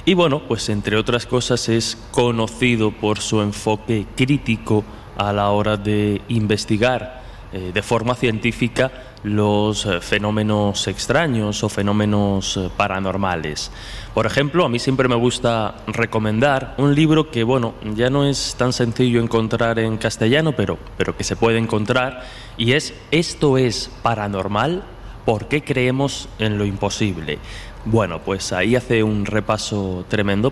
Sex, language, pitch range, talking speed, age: male, Spanish, 105-130 Hz, 140 wpm, 20-39